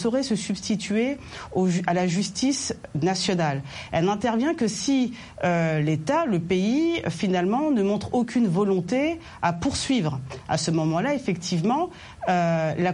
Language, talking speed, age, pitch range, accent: French, 130 wpm, 40-59, 180-240 Hz, French